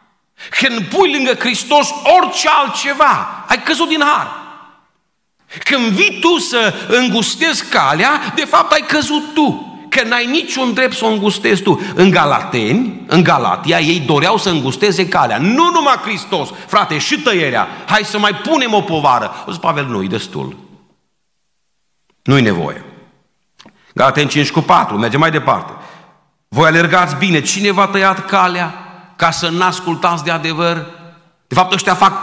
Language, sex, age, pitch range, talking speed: Romanian, male, 50-69, 165-235 Hz, 155 wpm